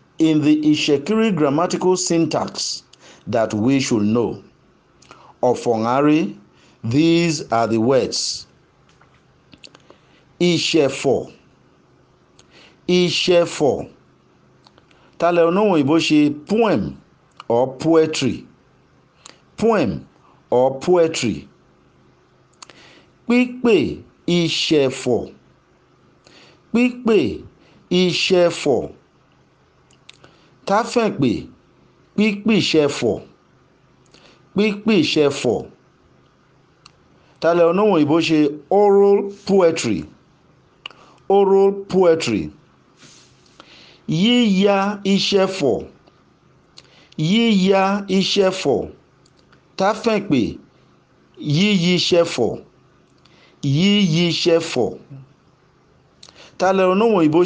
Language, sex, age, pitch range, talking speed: English, male, 50-69, 150-200 Hz, 65 wpm